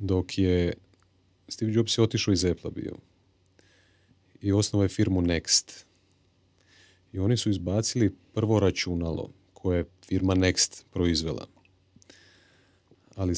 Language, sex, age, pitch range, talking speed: Croatian, male, 30-49, 90-110 Hz, 115 wpm